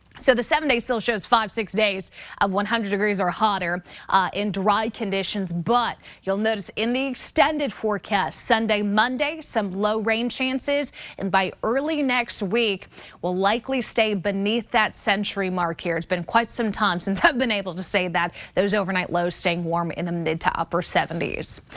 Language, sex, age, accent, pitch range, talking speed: English, female, 20-39, American, 195-245 Hz, 185 wpm